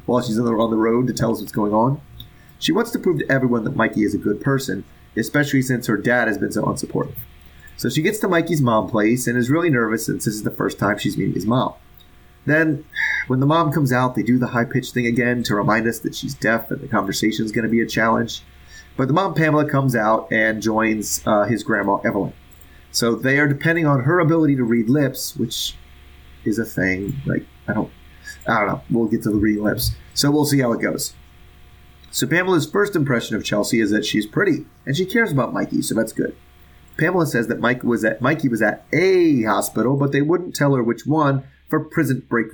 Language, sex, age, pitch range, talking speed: English, male, 30-49, 105-140 Hz, 230 wpm